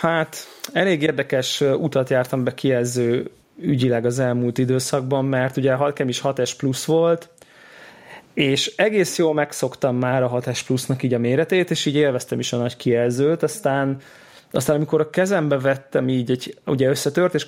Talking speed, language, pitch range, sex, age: 150 wpm, Hungarian, 125-155 Hz, male, 20-39